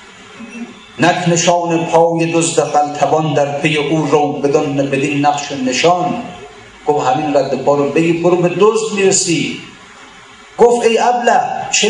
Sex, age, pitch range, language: male, 50-69, 165-225 Hz, Persian